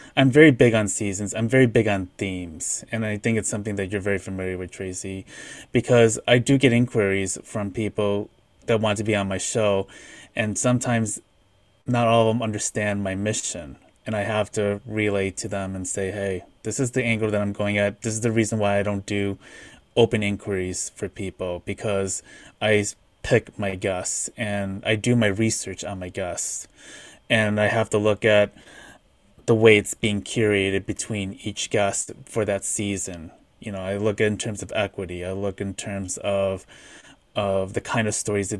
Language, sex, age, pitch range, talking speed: English, male, 20-39, 100-120 Hz, 190 wpm